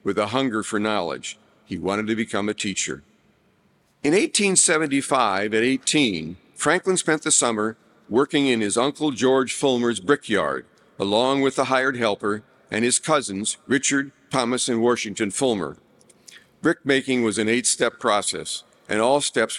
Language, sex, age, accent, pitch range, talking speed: English, male, 50-69, American, 105-140 Hz, 145 wpm